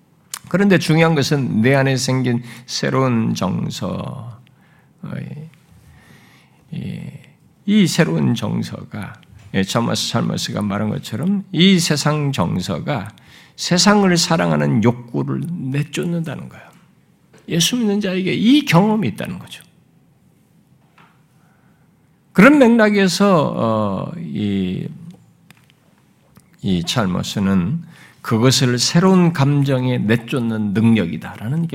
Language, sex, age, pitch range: Korean, male, 50-69, 125-180 Hz